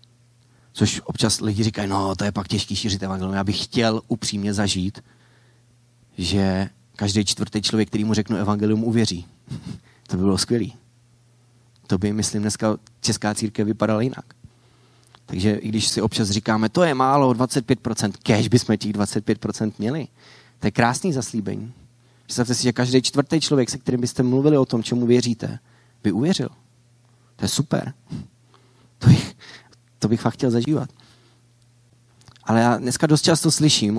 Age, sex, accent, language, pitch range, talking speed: 30-49, male, native, Czech, 105-120 Hz, 155 wpm